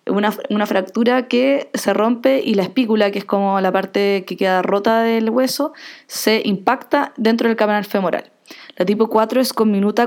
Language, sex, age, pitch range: Spanish, female, 20-39, 195-230 Hz